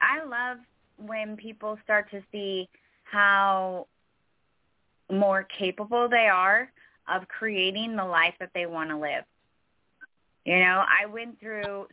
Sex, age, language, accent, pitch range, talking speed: female, 20-39, English, American, 175-210 Hz, 130 wpm